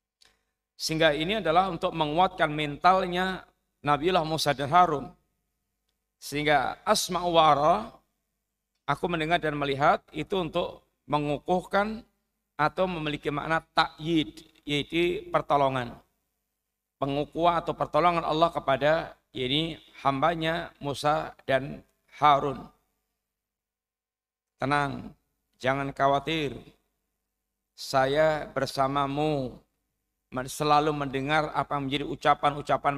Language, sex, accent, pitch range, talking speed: Indonesian, male, native, 135-165 Hz, 85 wpm